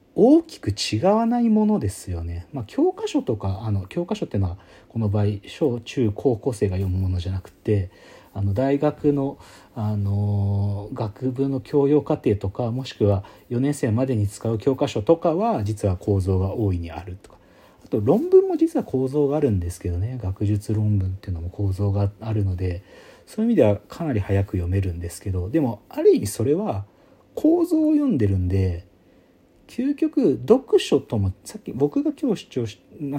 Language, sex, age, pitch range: Japanese, male, 40-59, 95-145 Hz